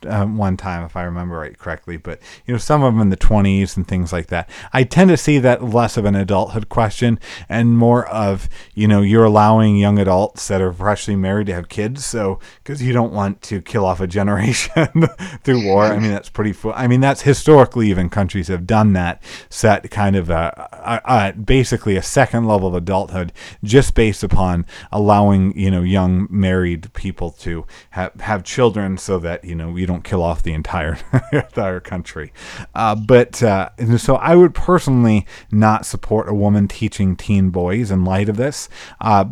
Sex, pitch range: male, 95-115 Hz